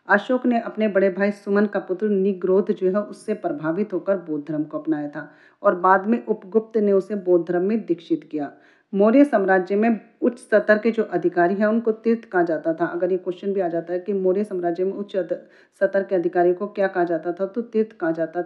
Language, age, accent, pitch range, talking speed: Hindi, 40-59, native, 180-225 Hz, 225 wpm